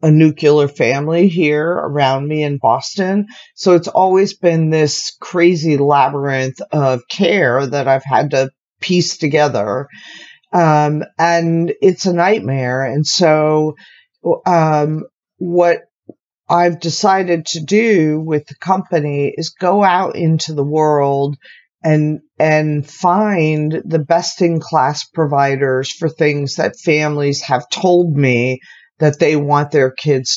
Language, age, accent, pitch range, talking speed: English, 50-69, American, 140-170 Hz, 130 wpm